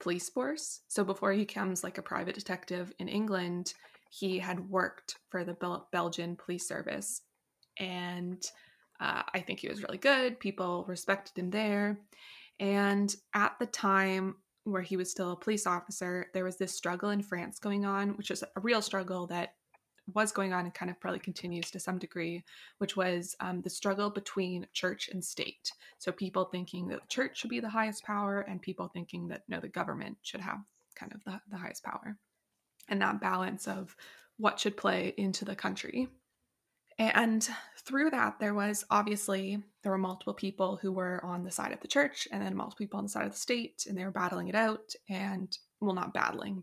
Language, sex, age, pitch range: English, female, 20-39, 180-205 Hz